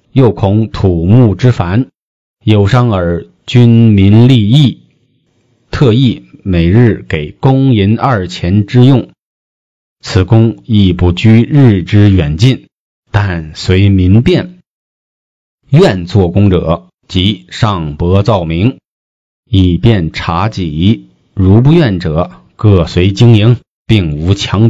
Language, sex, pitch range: Chinese, male, 90-115 Hz